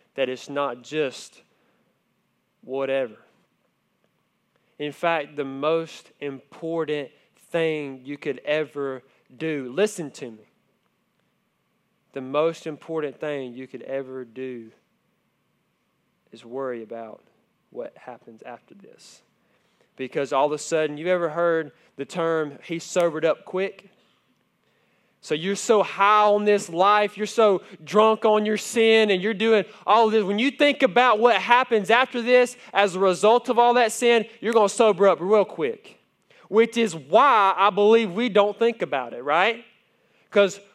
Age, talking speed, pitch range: 20-39, 145 wpm, 160-230 Hz